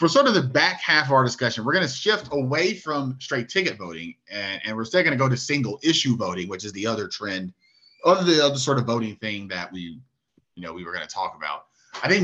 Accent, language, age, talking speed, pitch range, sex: American, English, 30-49, 260 wpm, 105-140 Hz, male